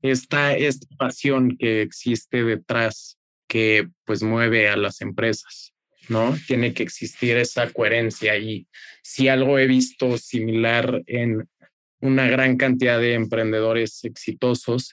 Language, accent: Spanish, Mexican